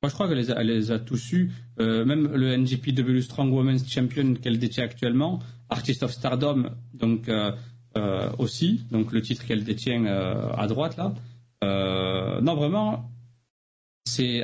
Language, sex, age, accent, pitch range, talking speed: French, male, 40-59, French, 115-130 Hz, 165 wpm